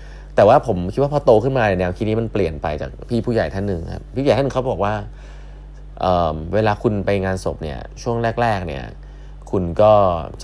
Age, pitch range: 20-39, 90-120 Hz